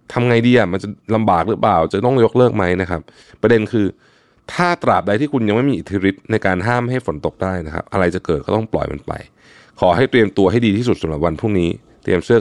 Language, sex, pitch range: Thai, male, 90-120 Hz